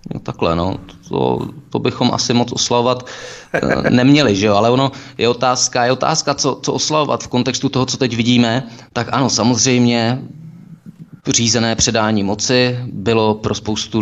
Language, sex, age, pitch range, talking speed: Czech, male, 20-39, 105-120 Hz, 150 wpm